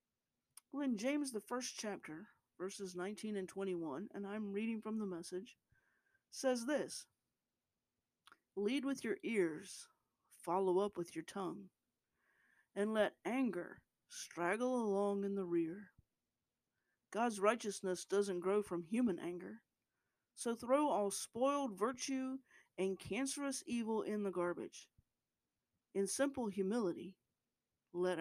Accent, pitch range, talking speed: American, 195-280 Hz, 120 wpm